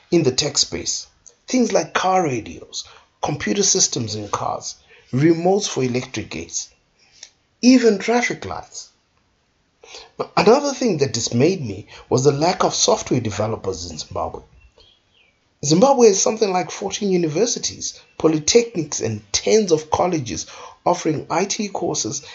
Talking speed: 125 wpm